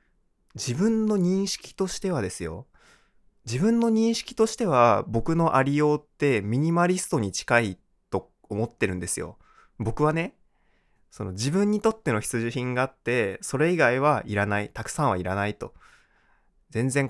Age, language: 20-39, Japanese